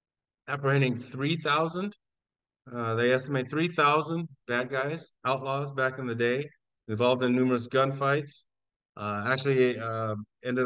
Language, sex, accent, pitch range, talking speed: English, male, American, 115-140 Hz, 130 wpm